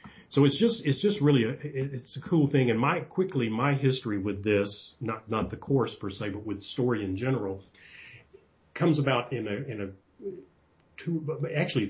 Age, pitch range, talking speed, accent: 40-59, 100-135 Hz, 185 wpm, American